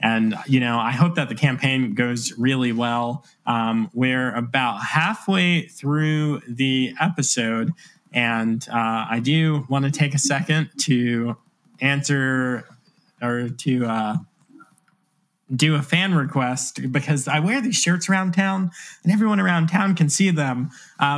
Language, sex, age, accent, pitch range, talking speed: English, male, 20-39, American, 125-165 Hz, 145 wpm